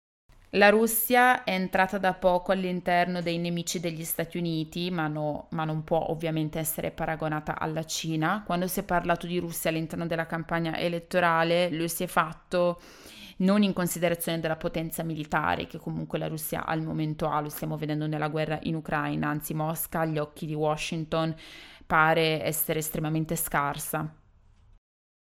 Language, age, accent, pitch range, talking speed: Italian, 20-39, native, 155-175 Hz, 155 wpm